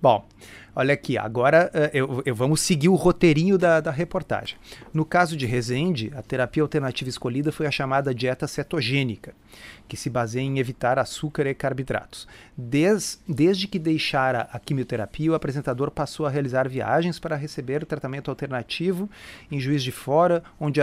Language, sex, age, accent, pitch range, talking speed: Portuguese, male, 40-59, Brazilian, 125-160 Hz, 160 wpm